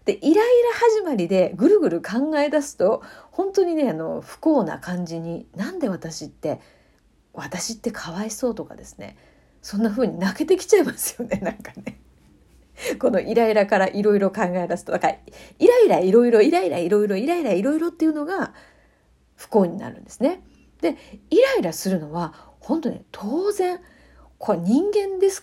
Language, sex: Japanese, female